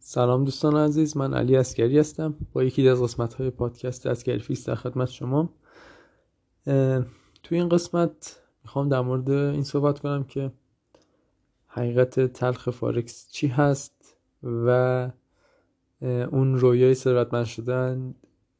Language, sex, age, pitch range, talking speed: Persian, male, 20-39, 120-140 Hz, 120 wpm